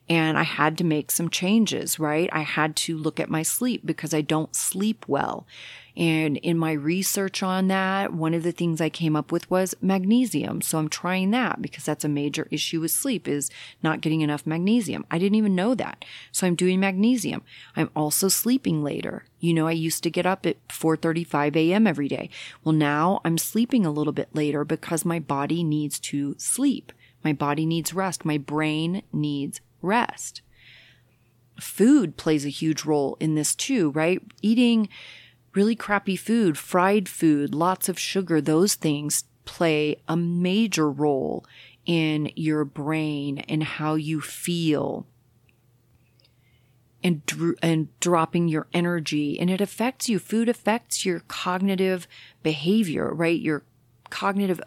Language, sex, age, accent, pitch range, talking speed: English, female, 30-49, American, 150-185 Hz, 160 wpm